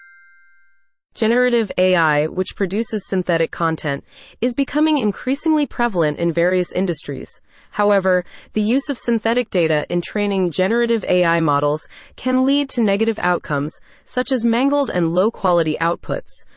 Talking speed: 130 wpm